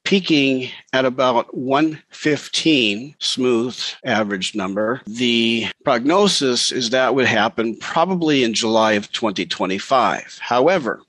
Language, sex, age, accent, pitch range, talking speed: English, male, 50-69, American, 115-140 Hz, 105 wpm